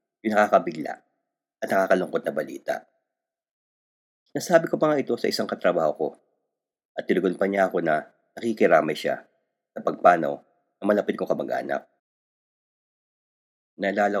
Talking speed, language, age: 125 wpm, Filipino, 40-59